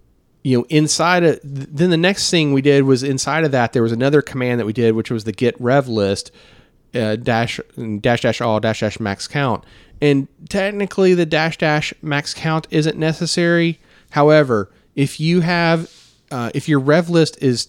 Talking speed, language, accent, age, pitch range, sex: 190 wpm, English, American, 30-49, 105-140 Hz, male